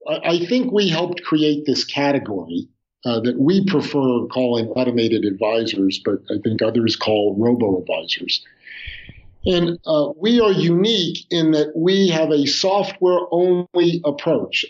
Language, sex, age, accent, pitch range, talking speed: English, male, 50-69, American, 125-170 Hz, 130 wpm